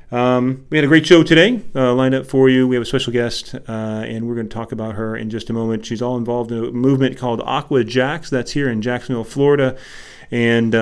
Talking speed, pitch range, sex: 245 wpm, 115-135 Hz, male